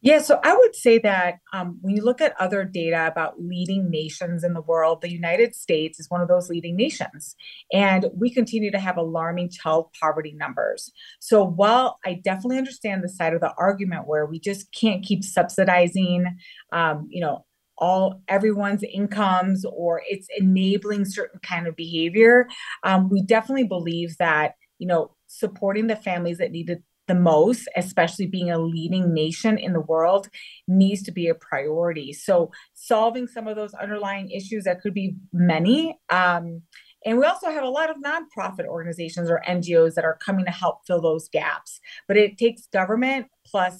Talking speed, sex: 180 wpm, female